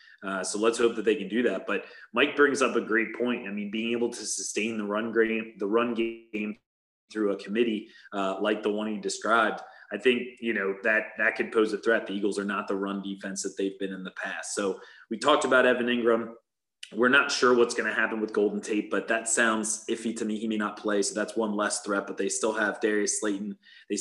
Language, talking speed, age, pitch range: English, 235 wpm, 30-49, 105-120 Hz